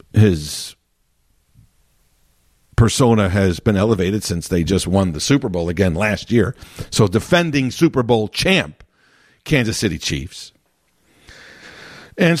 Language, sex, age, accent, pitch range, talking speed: English, male, 50-69, American, 105-170 Hz, 115 wpm